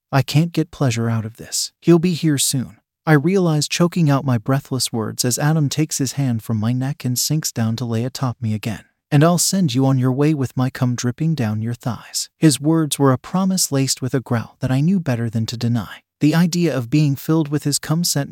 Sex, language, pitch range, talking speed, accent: male, English, 120-155 Hz, 240 wpm, American